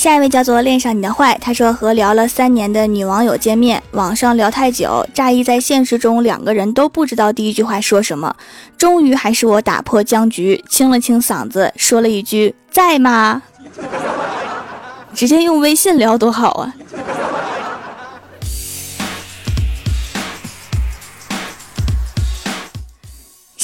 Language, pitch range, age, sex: Chinese, 215-270 Hz, 20-39, female